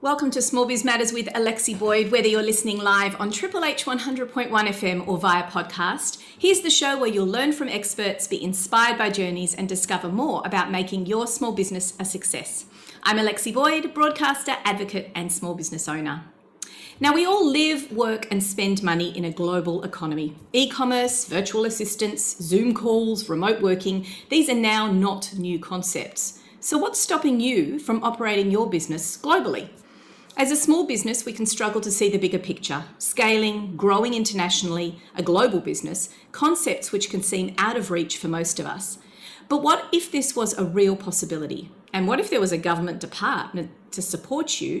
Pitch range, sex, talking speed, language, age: 180-250 Hz, female, 180 wpm, English, 40-59